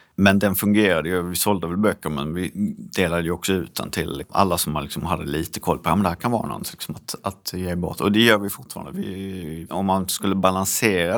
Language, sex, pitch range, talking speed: Swedish, male, 85-100 Hz, 235 wpm